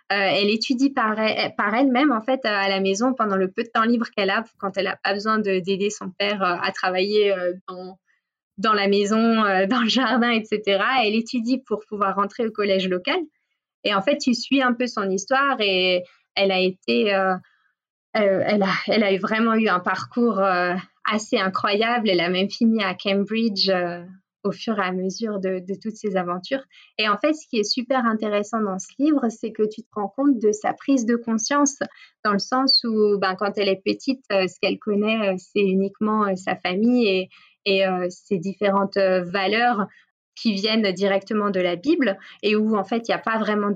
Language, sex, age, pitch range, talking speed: French, female, 20-39, 195-230 Hz, 210 wpm